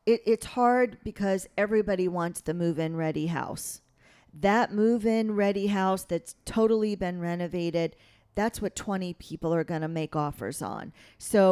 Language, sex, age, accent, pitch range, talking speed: English, female, 40-59, American, 170-205 Hz, 150 wpm